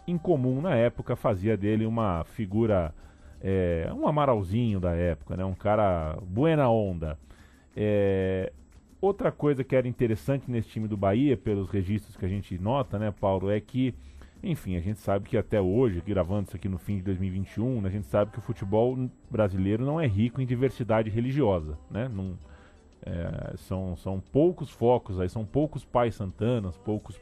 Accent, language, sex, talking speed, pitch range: Brazilian, Portuguese, male, 170 wpm, 95-125 Hz